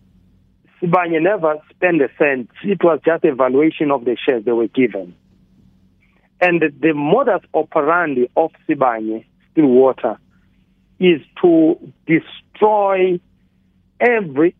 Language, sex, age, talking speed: English, male, 50-69, 115 wpm